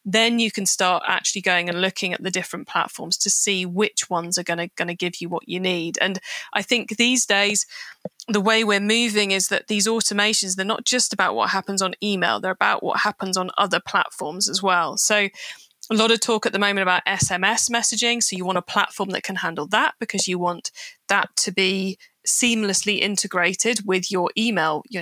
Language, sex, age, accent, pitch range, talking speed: English, female, 20-39, British, 190-230 Hz, 210 wpm